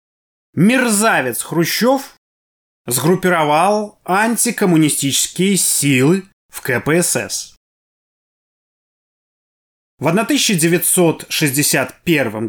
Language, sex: Russian, male